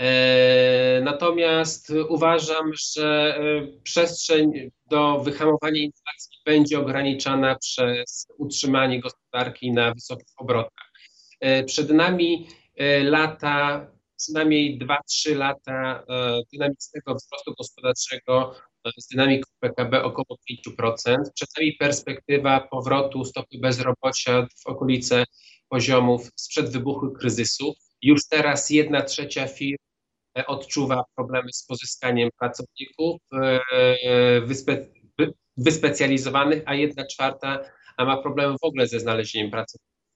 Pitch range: 125-150 Hz